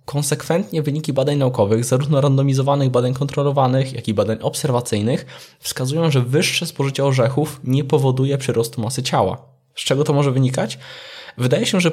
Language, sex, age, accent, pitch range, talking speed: Polish, male, 20-39, native, 125-150 Hz, 150 wpm